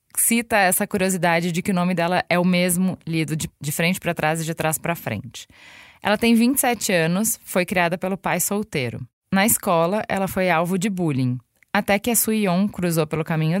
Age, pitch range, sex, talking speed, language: 20-39, 160-200 Hz, female, 200 wpm, Portuguese